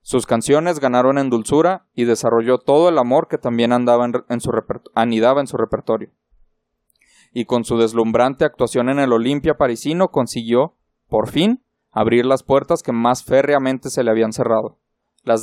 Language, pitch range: Spanish, 120-155 Hz